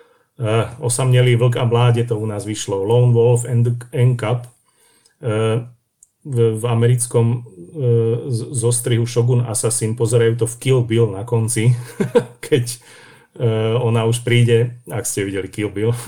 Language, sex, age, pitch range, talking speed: Slovak, male, 40-59, 110-120 Hz, 150 wpm